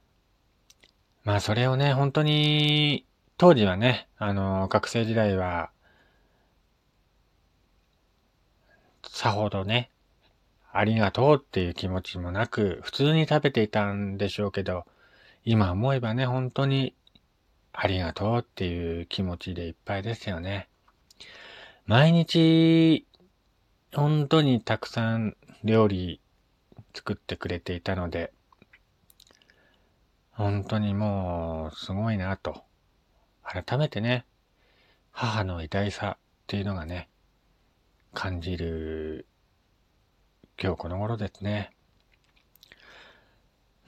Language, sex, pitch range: Japanese, male, 90-125 Hz